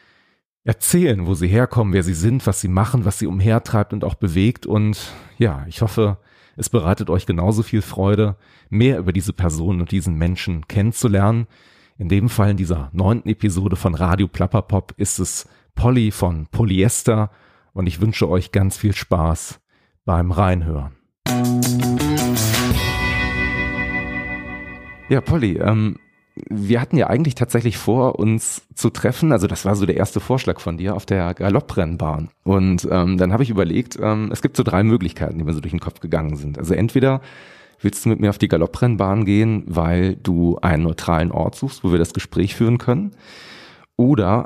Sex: male